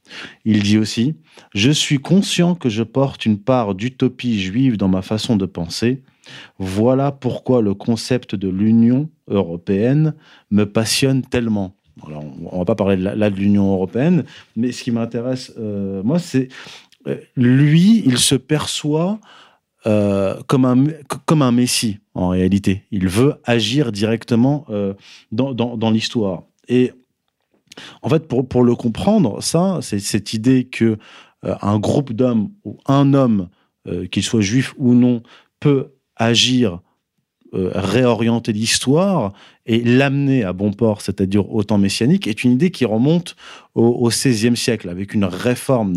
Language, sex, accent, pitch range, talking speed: French, male, French, 100-135 Hz, 155 wpm